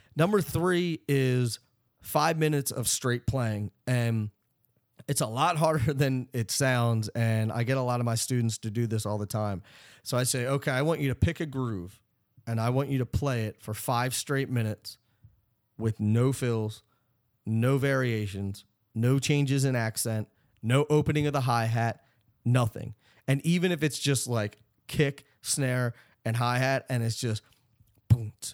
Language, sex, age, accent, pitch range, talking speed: English, male, 30-49, American, 110-135 Hz, 170 wpm